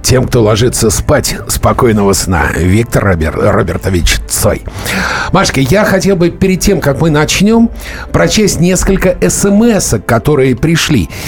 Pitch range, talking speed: 125-185 Hz, 120 wpm